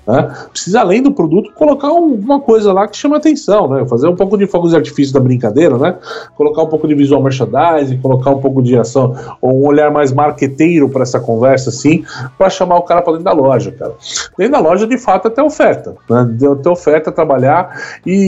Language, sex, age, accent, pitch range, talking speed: Portuguese, male, 20-39, Brazilian, 140-185 Hz, 215 wpm